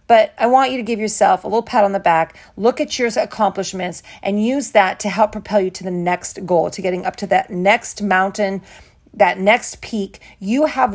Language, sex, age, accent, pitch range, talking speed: English, female, 40-59, American, 190-230 Hz, 220 wpm